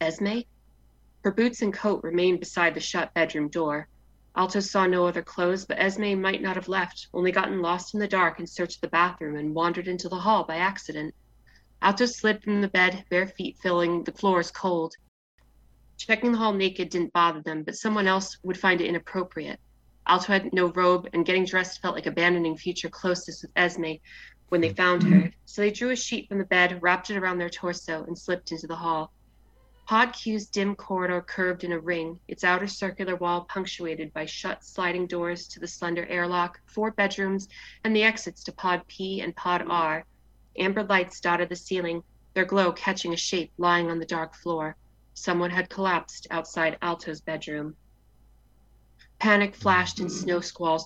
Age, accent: 30-49, American